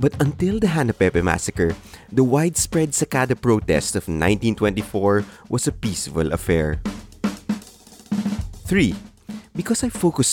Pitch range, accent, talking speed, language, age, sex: 95-145 Hz, Filipino, 110 wpm, English, 20-39, male